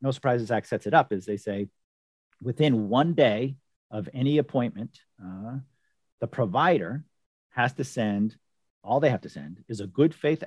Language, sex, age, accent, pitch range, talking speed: English, male, 40-59, American, 105-130 Hz, 170 wpm